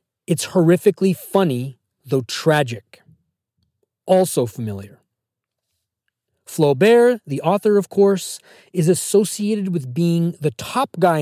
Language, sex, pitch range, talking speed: English, male, 125-180 Hz, 100 wpm